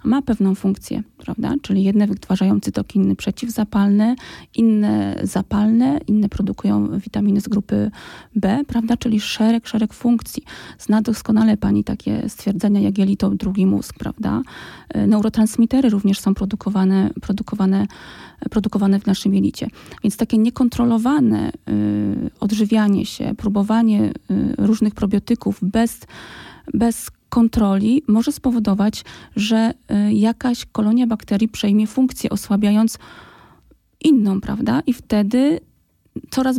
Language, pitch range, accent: Polish, 200-235 Hz, native